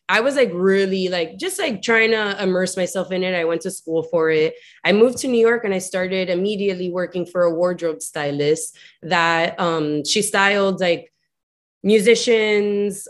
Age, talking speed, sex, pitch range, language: 20-39, 180 wpm, female, 175-225 Hz, English